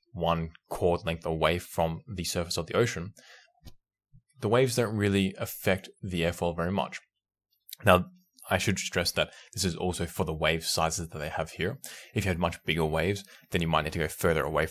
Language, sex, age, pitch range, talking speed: English, male, 20-39, 80-100 Hz, 200 wpm